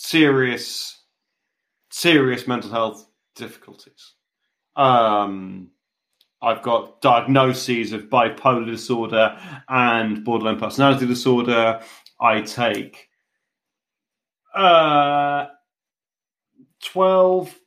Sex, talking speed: male, 70 wpm